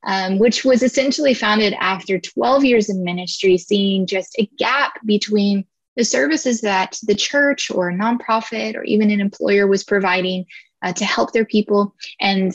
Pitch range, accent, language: 185-230 Hz, American, English